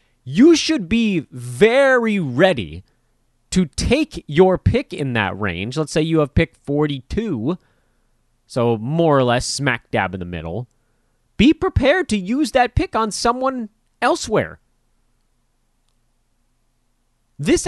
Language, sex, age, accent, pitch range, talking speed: English, male, 30-49, American, 120-185 Hz, 125 wpm